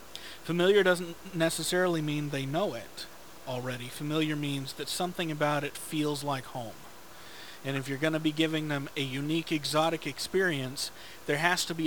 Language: English